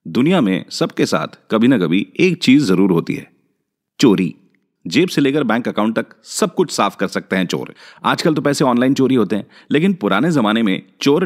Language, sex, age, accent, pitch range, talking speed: Hindi, male, 40-59, native, 110-170 Hz, 205 wpm